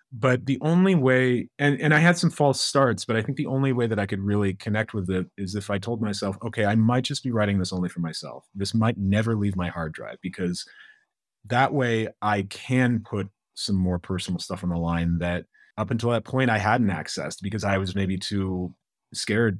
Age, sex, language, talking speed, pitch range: 30-49, male, English, 225 wpm, 90-110 Hz